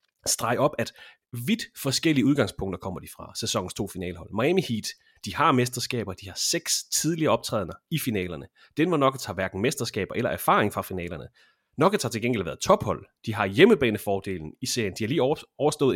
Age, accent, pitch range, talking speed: 30-49, native, 105-155 Hz, 185 wpm